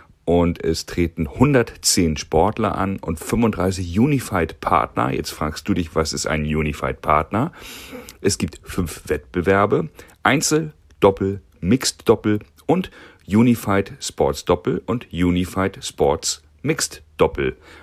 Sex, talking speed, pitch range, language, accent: male, 95 wpm, 80-100 Hz, German, German